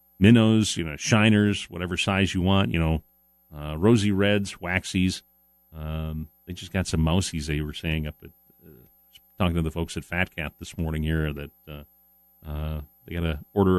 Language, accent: English, American